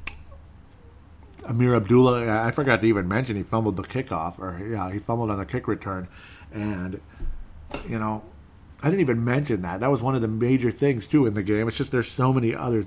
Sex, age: male, 40-59